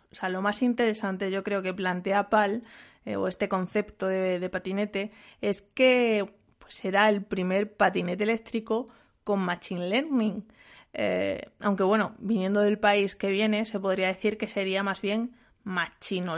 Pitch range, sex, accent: 180-215 Hz, female, Spanish